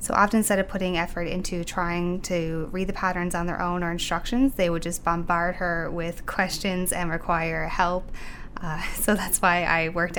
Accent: American